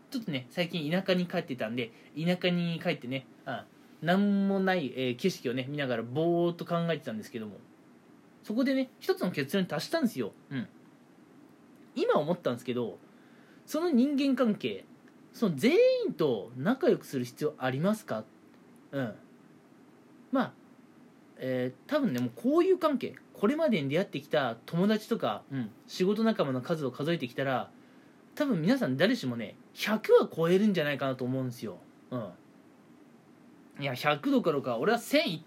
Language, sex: Japanese, male